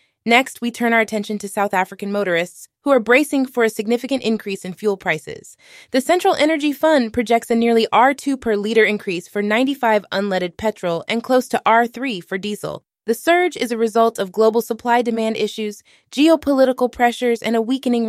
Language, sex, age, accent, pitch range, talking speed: English, female, 20-39, American, 210-265 Hz, 180 wpm